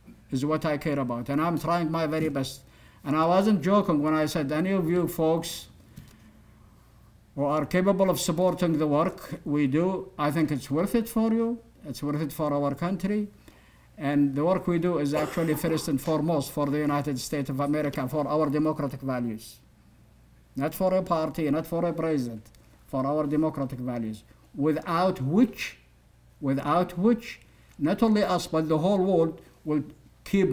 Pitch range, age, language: 140-175 Hz, 50-69, English